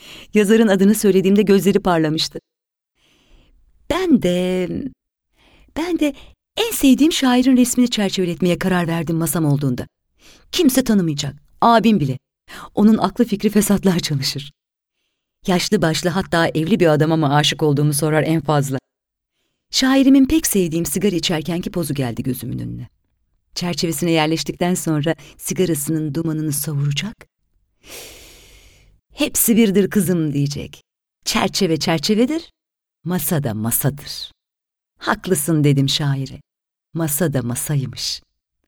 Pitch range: 145-200 Hz